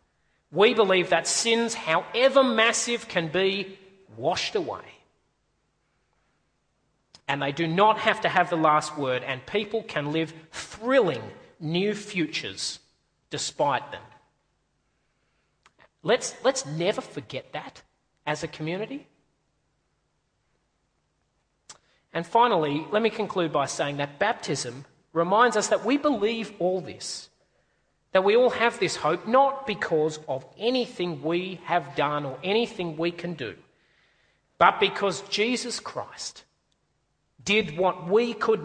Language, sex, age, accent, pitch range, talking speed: English, male, 40-59, Australian, 160-220 Hz, 125 wpm